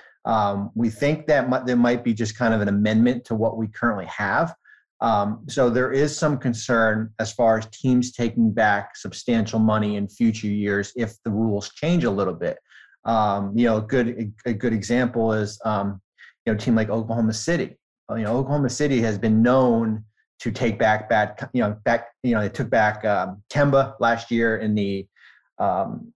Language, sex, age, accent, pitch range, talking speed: English, male, 30-49, American, 110-125 Hz, 195 wpm